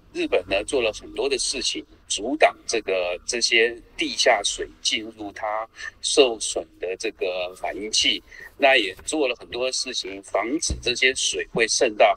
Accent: native